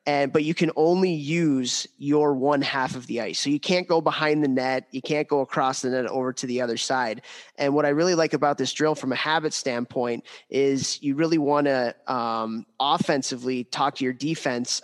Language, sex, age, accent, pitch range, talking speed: English, male, 20-39, American, 125-150 Hz, 215 wpm